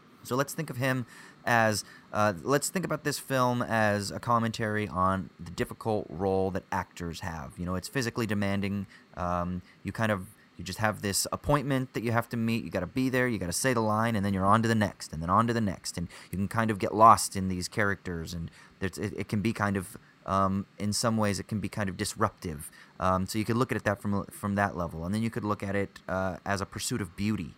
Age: 30-49